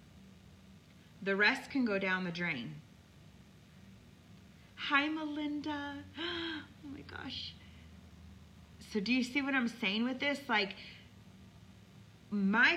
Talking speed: 110 wpm